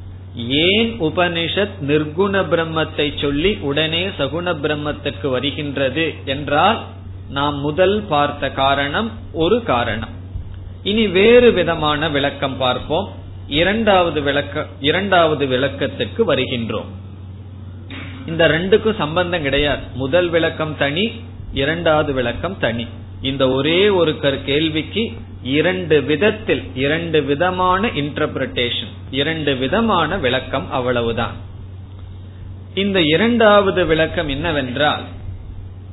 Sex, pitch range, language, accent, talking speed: male, 100-165 Hz, Tamil, native, 80 wpm